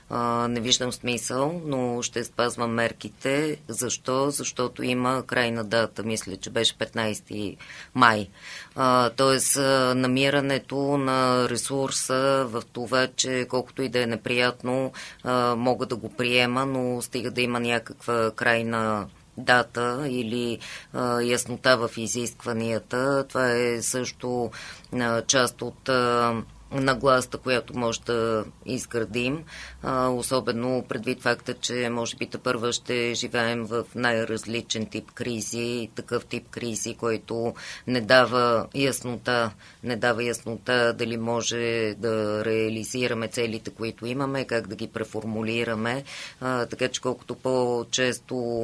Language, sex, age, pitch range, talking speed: Bulgarian, female, 20-39, 115-125 Hz, 120 wpm